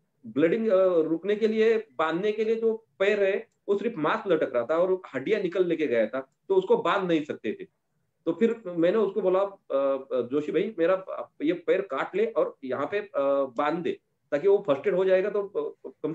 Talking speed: 195 wpm